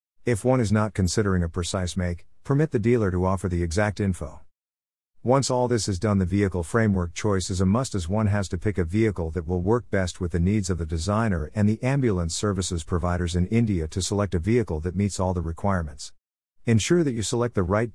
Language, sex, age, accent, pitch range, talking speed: English, male, 50-69, American, 90-110 Hz, 225 wpm